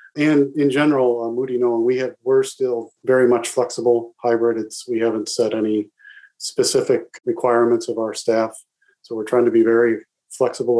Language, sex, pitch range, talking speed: English, male, 120-160 Hz, 170 wpm